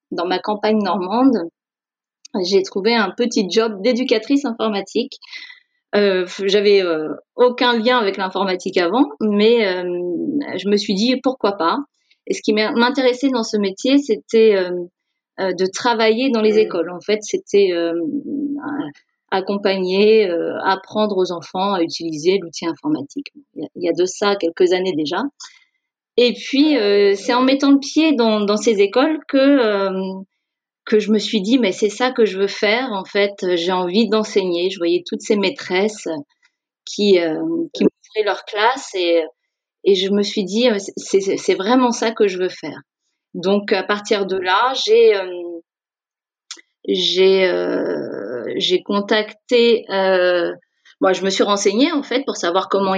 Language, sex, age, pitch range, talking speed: French, female, 30-49, 190-255 Hz, 160 wpm